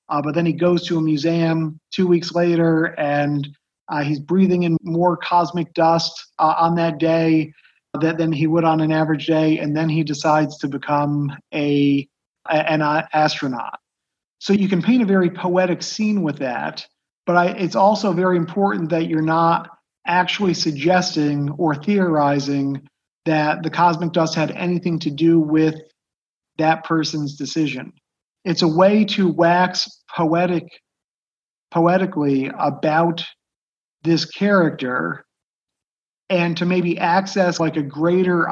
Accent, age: American, 40-59